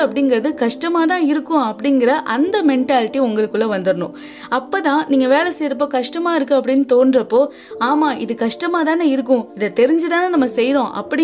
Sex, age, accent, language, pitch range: female, 20-39, native, Tamil, 235-300 Hz